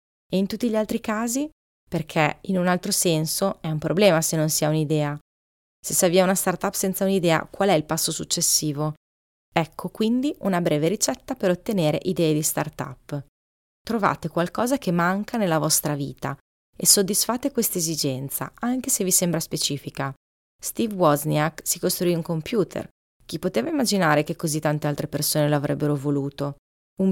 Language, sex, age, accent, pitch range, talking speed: Italian, female, 20-39, native, 150-195 Hz, 165 wpm